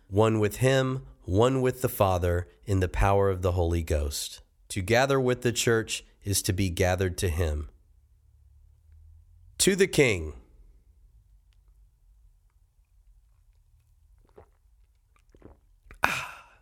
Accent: American